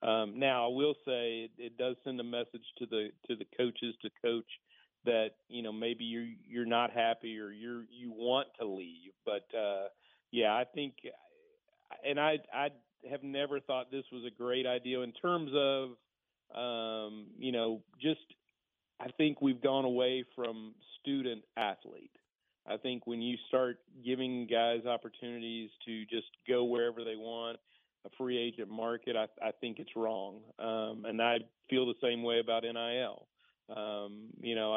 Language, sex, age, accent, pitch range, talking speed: English, male, 40-59, American, 115-130 Hz, 170 wpm